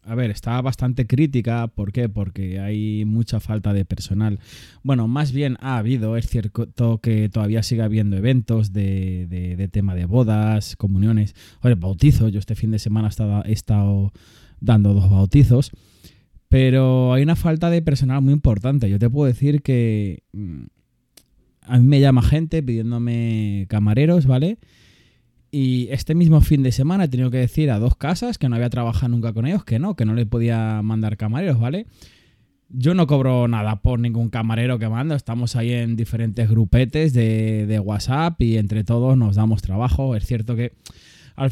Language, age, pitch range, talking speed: Spanish, 20-39, 110-130 Hz, 170 wpm